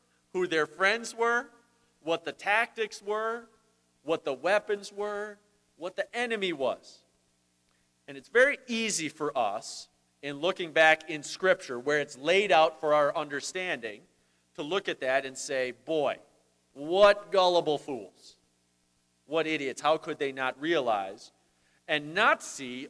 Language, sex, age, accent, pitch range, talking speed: English, male, 40-59, American, 125-180 Hz, 140 wpm